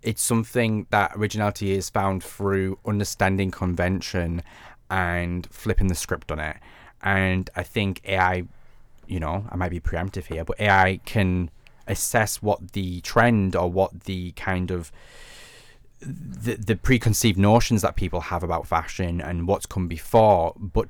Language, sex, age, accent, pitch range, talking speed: English, male, 20-39, British, 90-105 Hz, 150 wpm